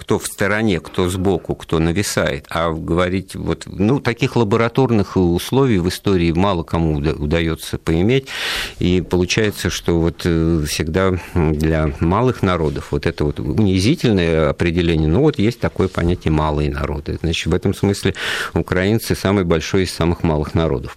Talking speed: 145 wpm